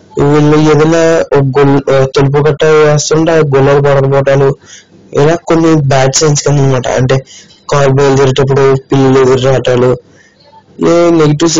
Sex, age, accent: male, 20-39, native